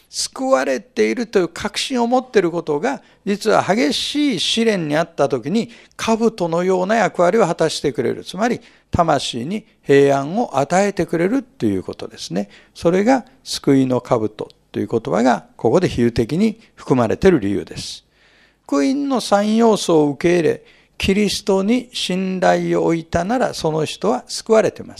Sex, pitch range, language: male, 150-215 Hz, Japanese